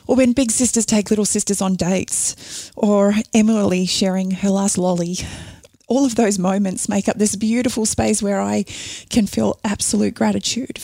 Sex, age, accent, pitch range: female, 20-39, Australian, 195-230 Hz